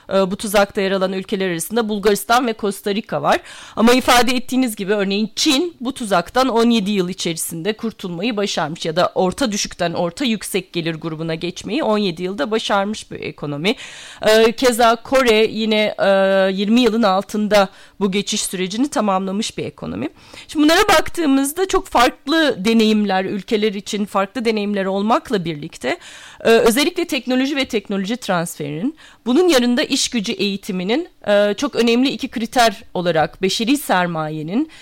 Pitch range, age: 185-235 Hz, 40-59